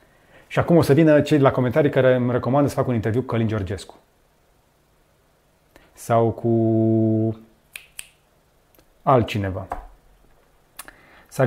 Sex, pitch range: male, 115-140 Hz